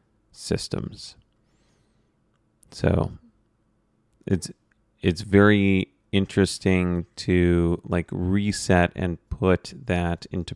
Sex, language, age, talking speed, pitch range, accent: male, English, 30-49, 75 wpm, 85-100 Hz, American